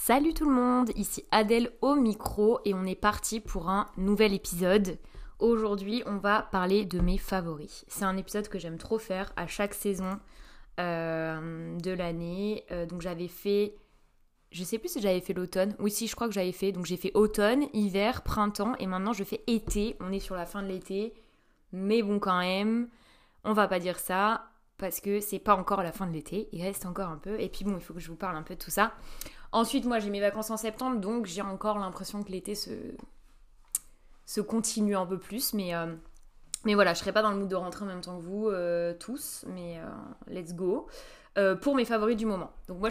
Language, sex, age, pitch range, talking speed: French, female, 20-39, 185-220 Hz, 220 wpm